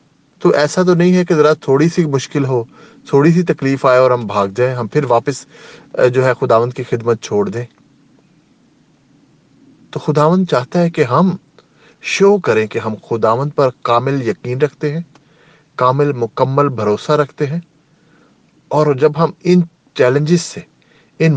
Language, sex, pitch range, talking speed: English, male, 125-165 Hz, 160 wpm